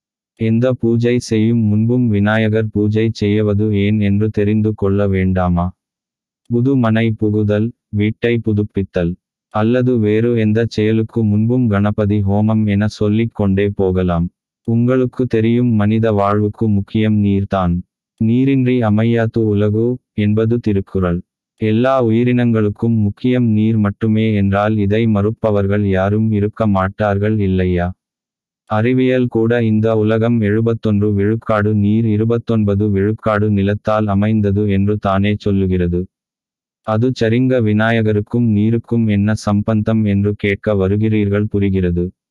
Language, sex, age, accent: Tamil, male, 20-39, native